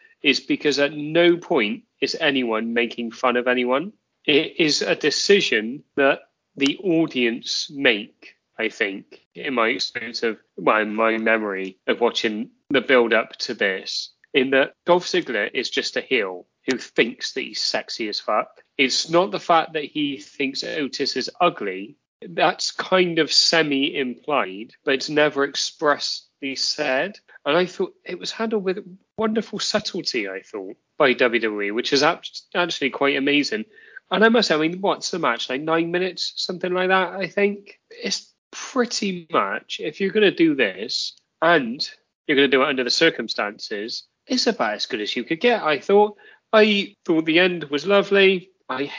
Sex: male